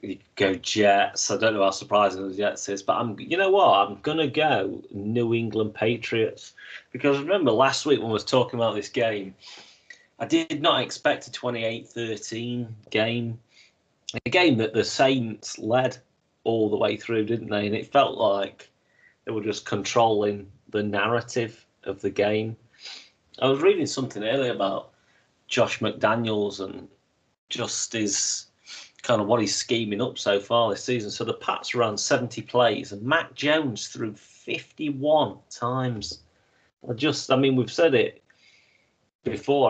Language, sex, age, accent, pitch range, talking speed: English, male, 30-49, British, 105-130 Hz, 160 wpm